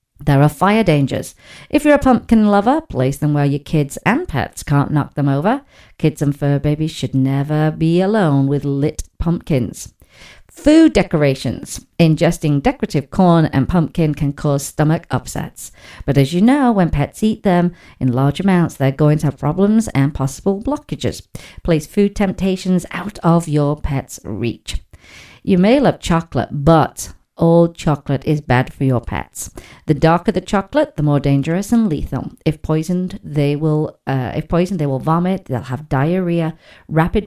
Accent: British